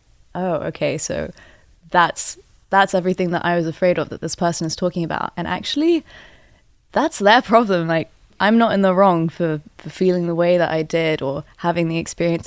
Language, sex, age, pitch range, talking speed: English, female, 20-39, 165-195 Hz, 190 wpm